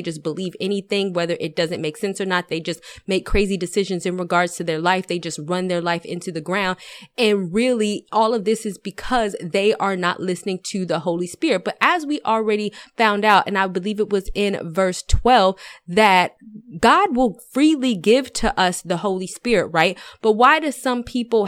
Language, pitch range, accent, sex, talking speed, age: English, 180-220 Hz, American, female, 205 wpm, 20-39